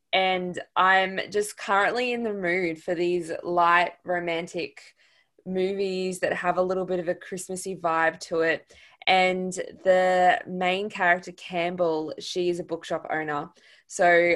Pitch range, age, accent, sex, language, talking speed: 165-185 Hz, 20-39, Australian, female, English, 140 wpm